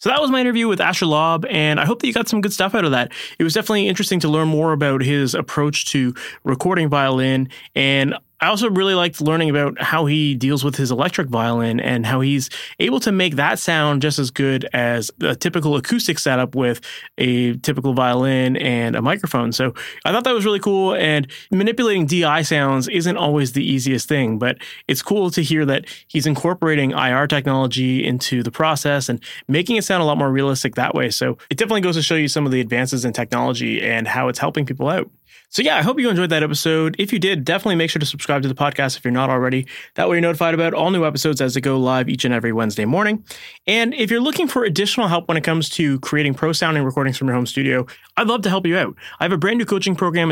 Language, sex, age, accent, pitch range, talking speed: English, male, 20-39, American, 135-185 Hz, 235 wpm